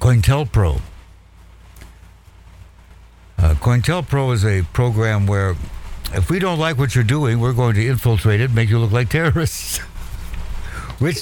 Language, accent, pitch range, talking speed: English, American, 85-120 Hz, 140 wpm